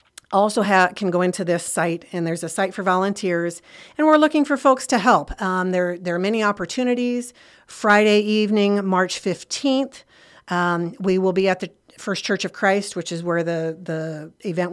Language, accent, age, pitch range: English, American, 50-69, 170-215 Hz